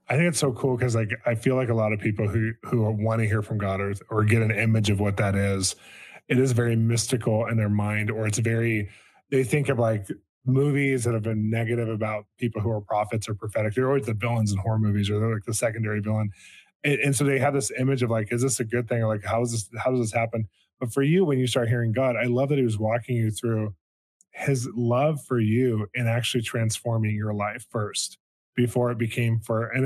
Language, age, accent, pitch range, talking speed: English, 10-29, American, 110-125 Hz, 245 wpm